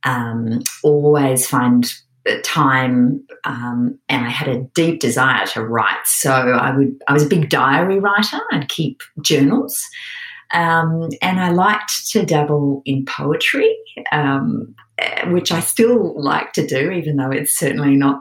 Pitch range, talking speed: 130-165 Hz, 150 wpm